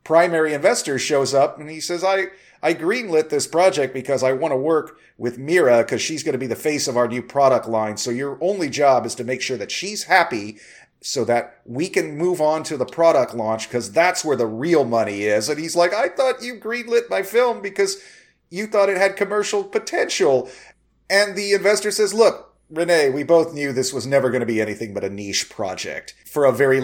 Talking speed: 220 wpm